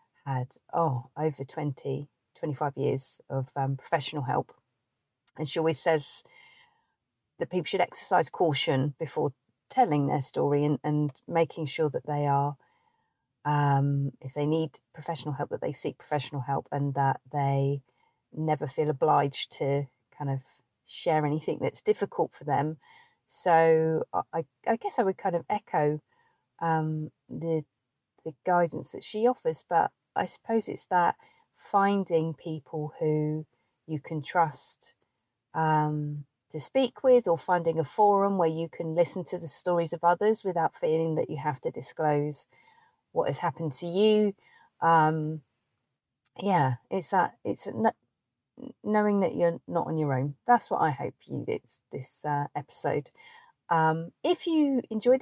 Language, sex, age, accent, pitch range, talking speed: English, female, 40-59, British, 145-180 Hz, 150 wpm